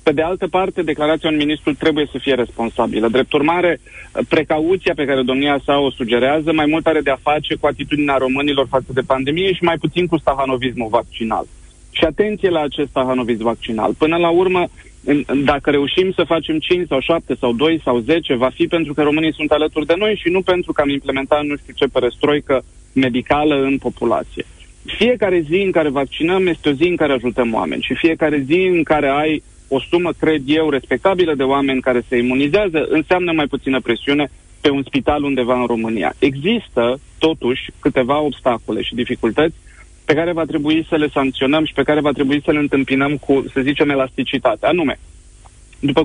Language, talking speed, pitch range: Romanian, 190 wpm, 130-160 Hz